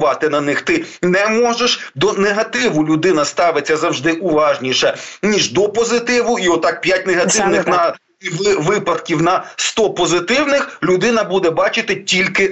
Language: Ukrainian